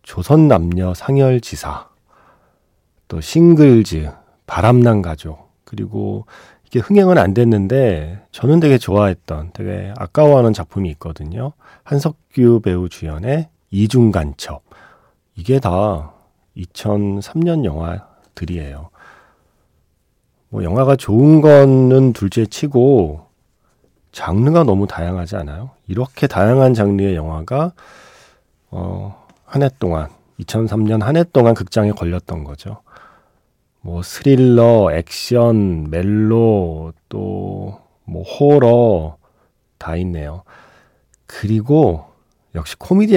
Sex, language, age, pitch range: male, Korean, 40-59, 85-130 Hz